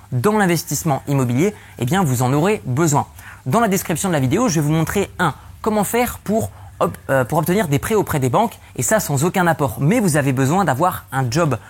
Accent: French